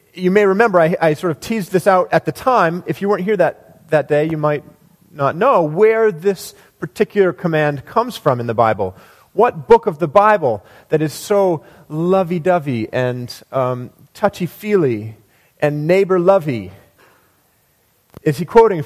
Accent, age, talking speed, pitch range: American, 40-59, 160 wpm, 135-195 Hz